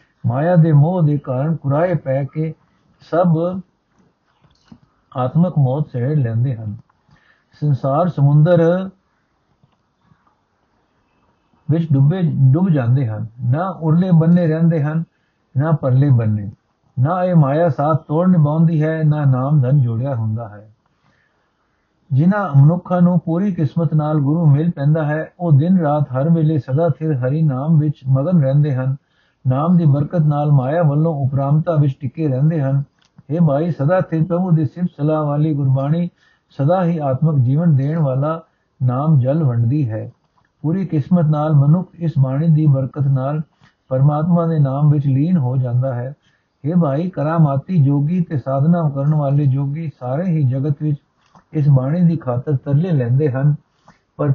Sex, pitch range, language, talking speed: male, 135-165 Hz, Punjabi, 150 wpm